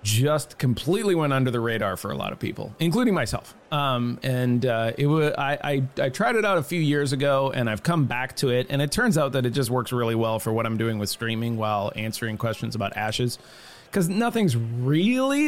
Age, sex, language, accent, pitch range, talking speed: 30-49, male, English, American, 125-170 Hz, 225 wpm